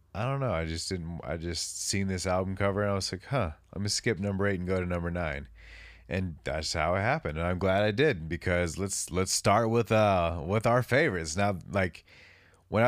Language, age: English, 20-39